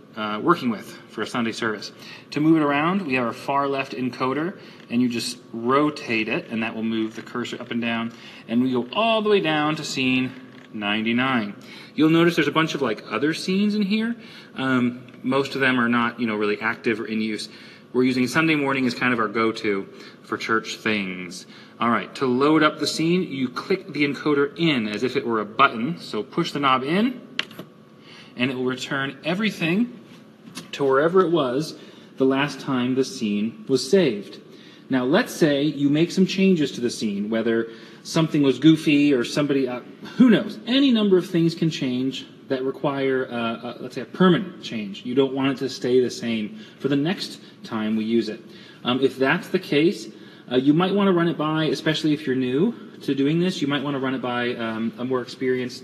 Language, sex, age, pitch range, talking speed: English, male, 30-49, 120-165 Hz, 210 wpm